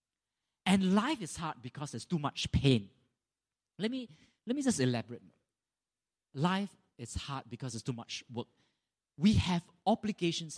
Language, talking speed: English, 145 wpm